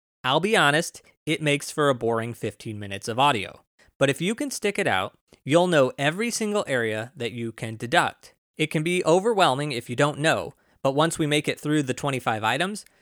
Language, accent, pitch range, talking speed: English, American, 115-155 Hz, 205 wpm